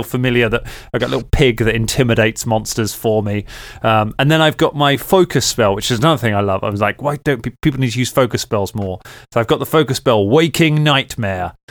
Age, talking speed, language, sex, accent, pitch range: 30-49, 235 wpm, English, male, British, 110-140 Hz